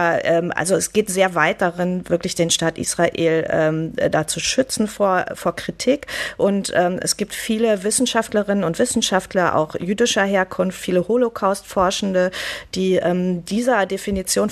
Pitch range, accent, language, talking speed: 170-205 Hz, German, German, 140 wpm